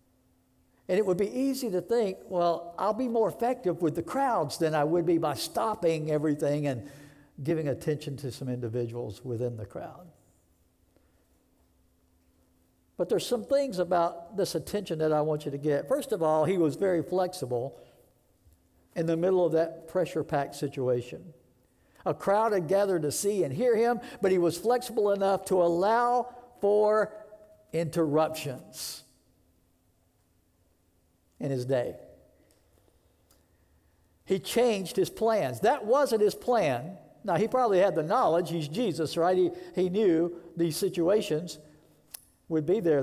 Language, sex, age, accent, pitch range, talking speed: English, male, 60-79, American, 130-195 Hz, 145 wpm